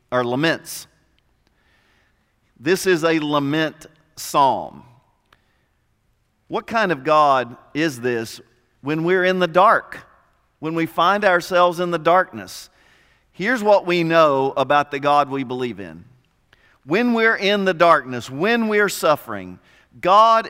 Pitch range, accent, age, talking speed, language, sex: 145-200 Hz, American, 50-69, 125 wpm, English, male